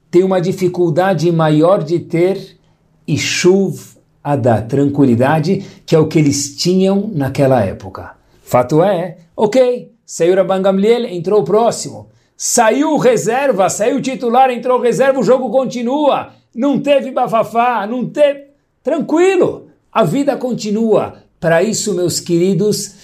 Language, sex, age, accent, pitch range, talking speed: Portuguese, male, 60-79, Brazilian, 140-195 Hz, 130 wpm